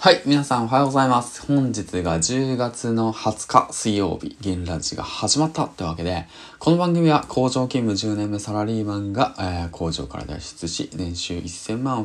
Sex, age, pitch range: male, 20-39, 90-120 Hz